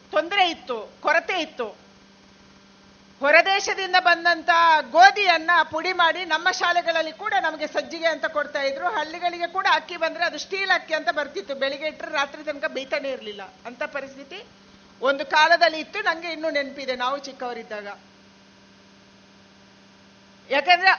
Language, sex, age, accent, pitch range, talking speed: Kannada, female, 50-69, native, 285-345 Hz, 125 wpm